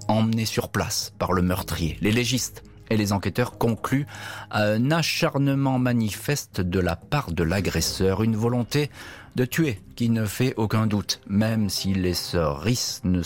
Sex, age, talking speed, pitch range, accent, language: male, 40-59, 165 wpm, 90-115 Hz, French, French